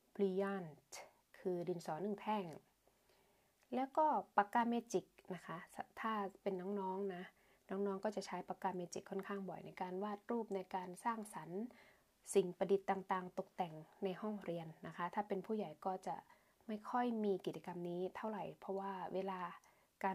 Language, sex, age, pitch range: Thai, female, 20-39, 185-215 Hz